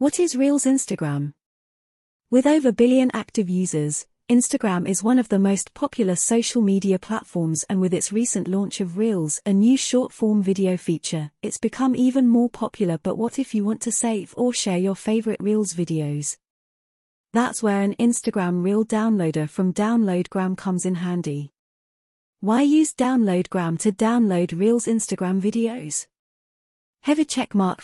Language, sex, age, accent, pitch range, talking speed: English, female, 30-49, British, 180-235 Hz, 155 wpm